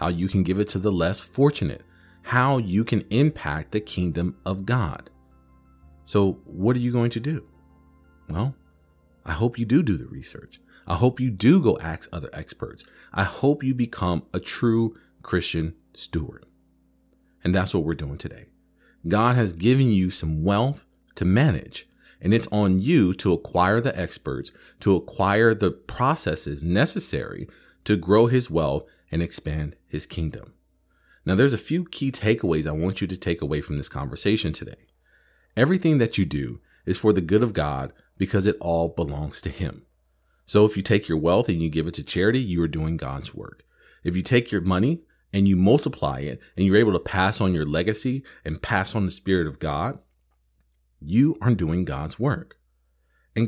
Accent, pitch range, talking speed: American, 80-110 Hz, 180 wpm